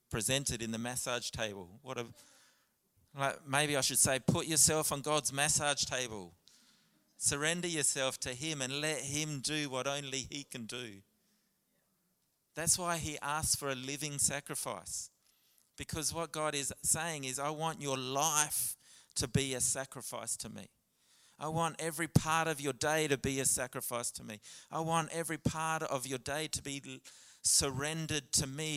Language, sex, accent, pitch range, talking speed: English, male, Australian, 125-155 Hz, 165 wpm